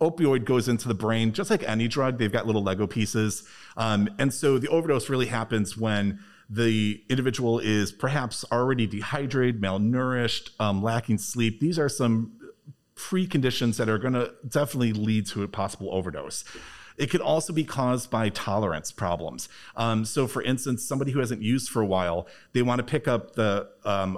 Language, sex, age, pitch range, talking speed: English, male, 40-59, 105-130 Hz, 180 wpm